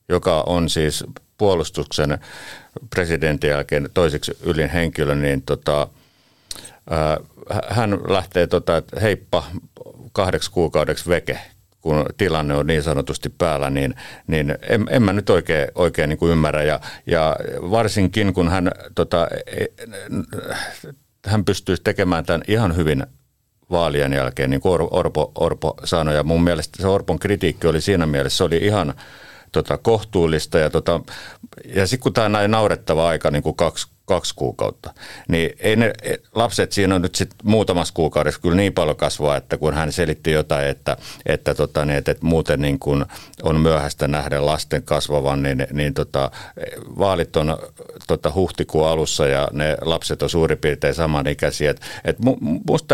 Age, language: 50-69, Finnish